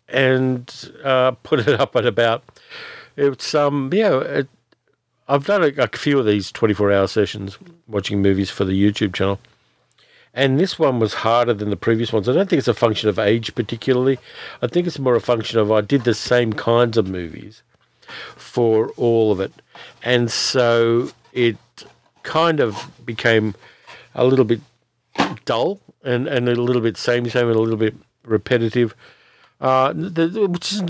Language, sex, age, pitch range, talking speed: English, male, 50-69, 105-130 Hz, 170 wpm